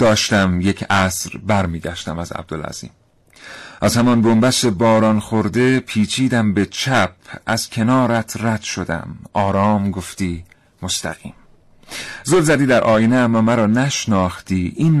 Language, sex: Persian, male